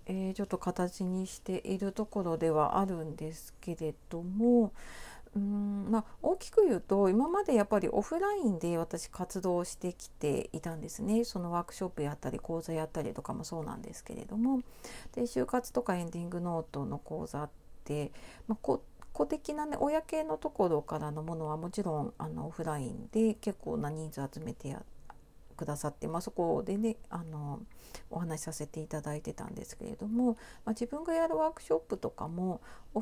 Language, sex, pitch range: Japanese, female, 165-230 Hz